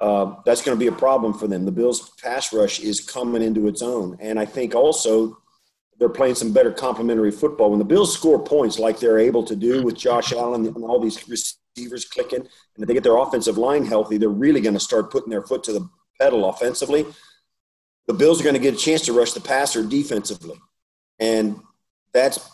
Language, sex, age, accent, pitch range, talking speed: English, male, 40-59, American, 110-140 Hz, 215 wpm